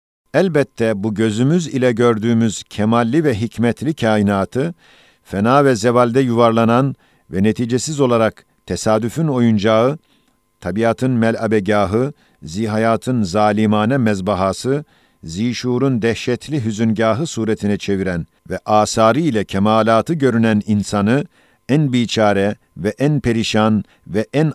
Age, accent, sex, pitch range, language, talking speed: 50-69, native, male, 105-125 Hz, Turkish, 100 wpm